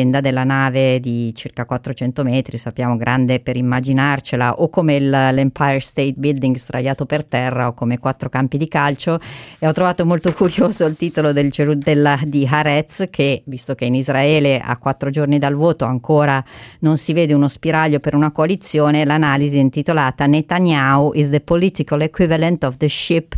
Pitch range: 130-150 Hz